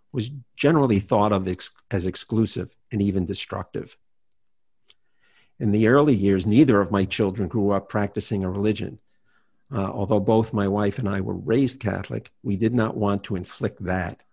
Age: 50-69